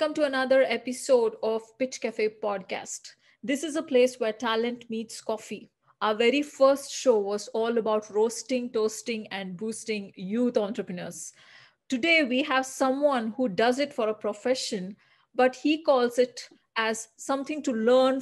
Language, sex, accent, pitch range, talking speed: English, female, Indian, 220-265 Hz, 150 wpm